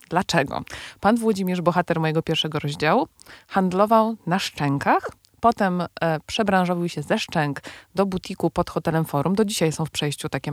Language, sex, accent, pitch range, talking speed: Polish, female, native, 160-195 Hz, 155 wpm